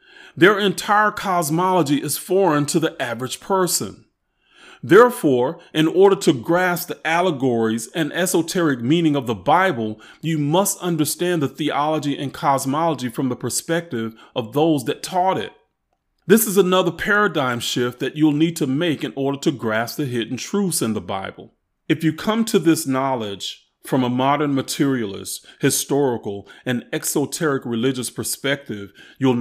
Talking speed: 150 wpm